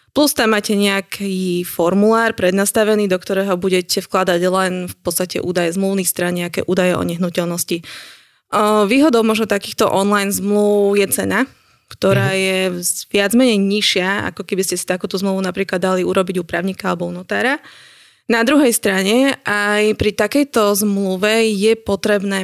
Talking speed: 140 wpm